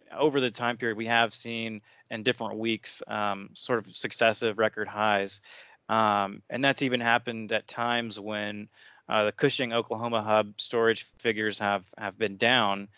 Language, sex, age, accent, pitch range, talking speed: English, male, 30-49, American, 105-120 Hz, 160 wpm